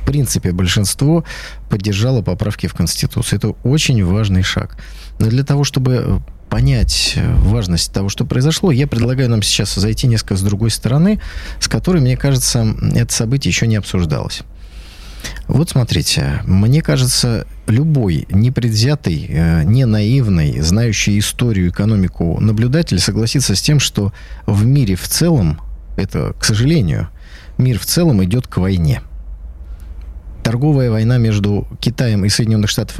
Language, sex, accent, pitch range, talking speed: Russian, male, native, 95-125 Hz, 135 wpm